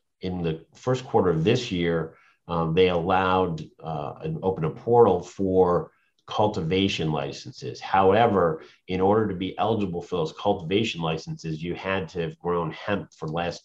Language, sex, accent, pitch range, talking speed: English, male, American, 85-100 Hz, 165 wpm